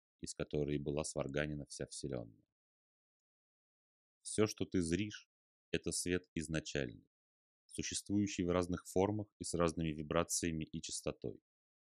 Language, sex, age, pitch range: Russian, male, 30-49, 75-90 Hz